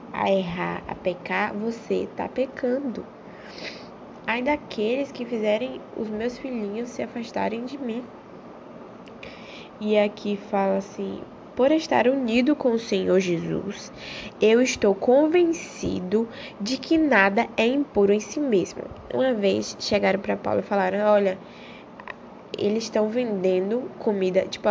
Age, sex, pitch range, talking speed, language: 10-29, female, 200-275 Hz, 130 wpm, Portuguese